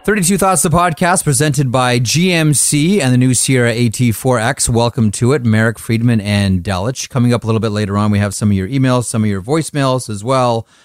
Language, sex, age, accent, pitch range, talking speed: English, male, 30-49, American, 105-135 Hz, 210 wpm